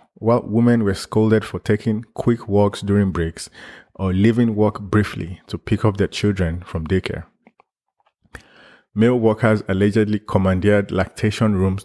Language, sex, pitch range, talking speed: English, male, 95-105 Hz, 135 wpm